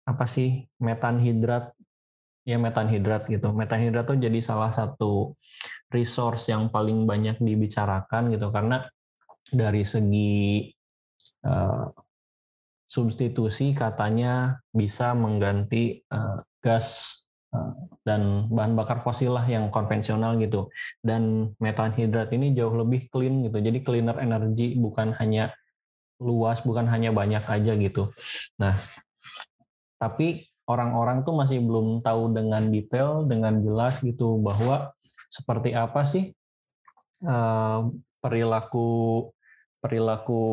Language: Indonesian